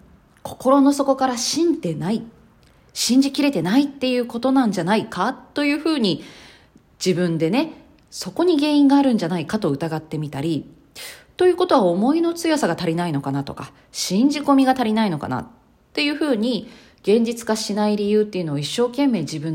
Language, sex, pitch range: Japanese, female, 180-280 Hz